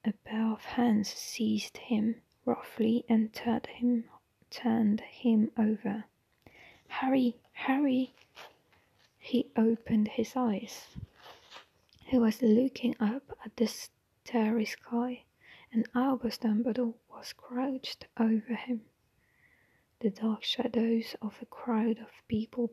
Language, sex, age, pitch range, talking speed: English, female, 20-39, 220-245 Hz, 110 wpm